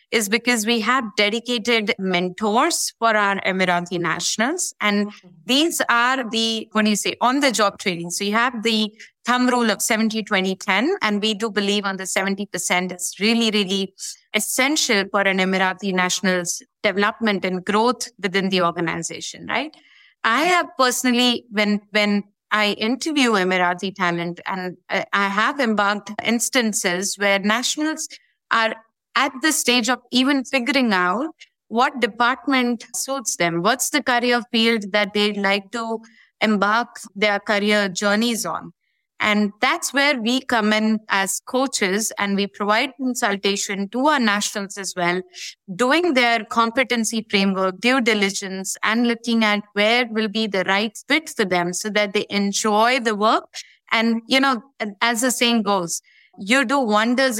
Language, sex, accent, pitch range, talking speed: English, female, Indian, 200-245 Hz, 150 wpm